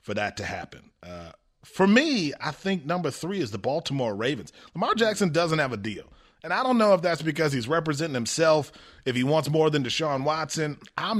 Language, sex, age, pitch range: English, male, 30-49, 115-155 Hz